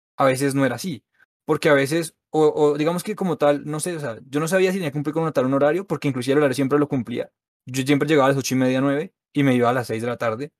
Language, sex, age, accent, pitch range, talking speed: Spanish, male, 20-39, Colombian, 130-155 Hz, 300 wpm